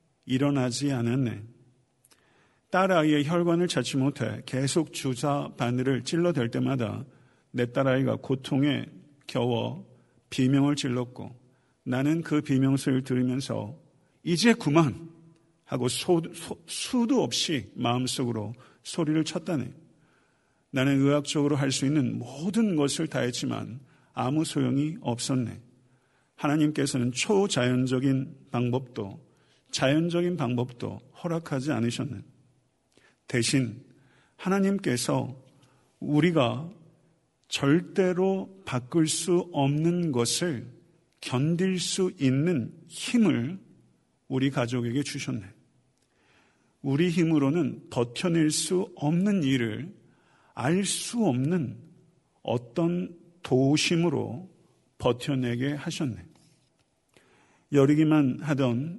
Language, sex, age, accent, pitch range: Korean, male, 50-69, native, 125-165 Hz